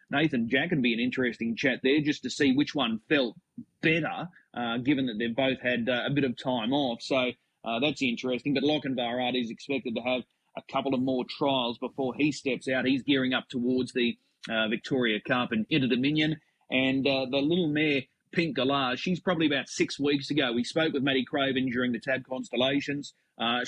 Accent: Australian